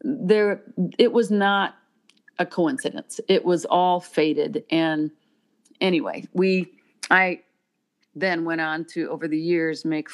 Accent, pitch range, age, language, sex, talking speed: American, 155-205 Hz, 50-69, English, female, 130 wpm